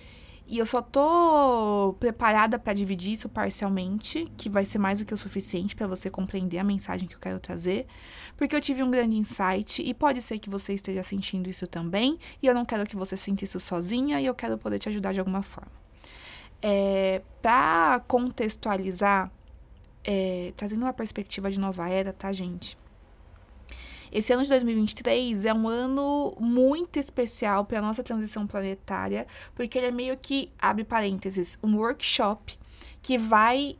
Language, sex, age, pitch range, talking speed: Portuguese, female, 20-39, 195-245 Hz, 165 wpm